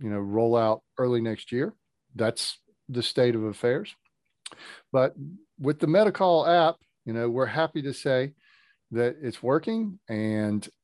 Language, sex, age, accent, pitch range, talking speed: English, male, 40-59, American, 115-145 Hz, 150 wpm